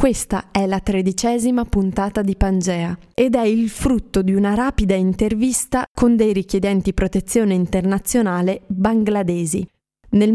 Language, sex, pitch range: Italian, female, 185-220 Hz